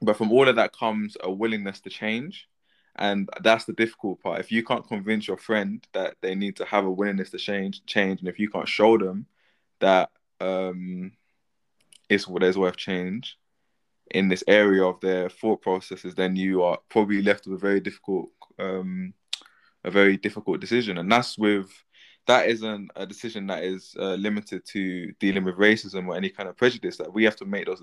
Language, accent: English, British